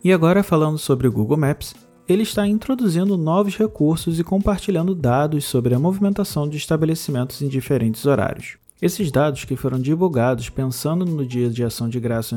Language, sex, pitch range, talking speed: Portuguese, male, 130-170 Hz, 170 wpm